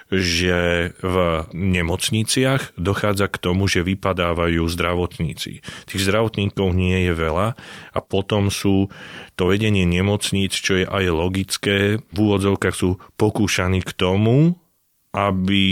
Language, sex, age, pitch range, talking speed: Slovak, male, 30-49, 85-95 Hz, 120 wpm